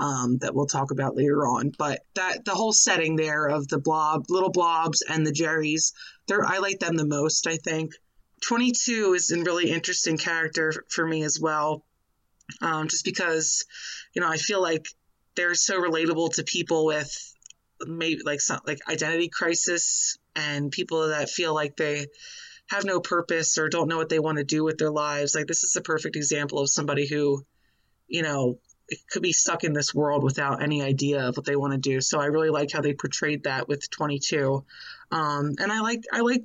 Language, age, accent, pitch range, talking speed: English, 20-39, American, 145-170 Hz, 200 wpm